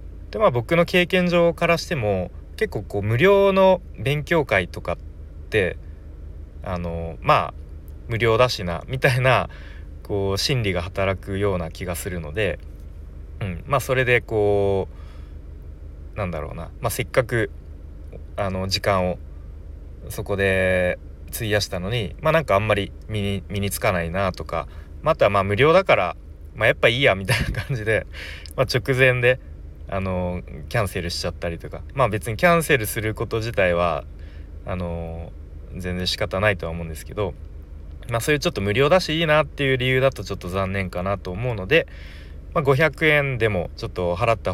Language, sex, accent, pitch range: Japanese, male, native, 75-110 Hz